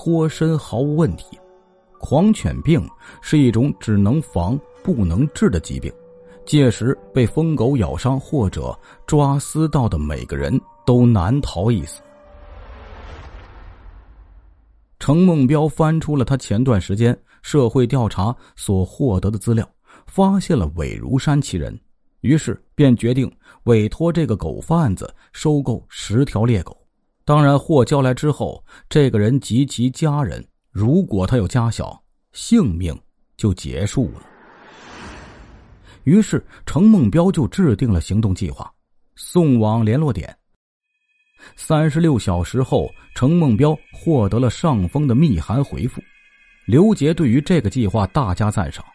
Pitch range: 95-155 Hz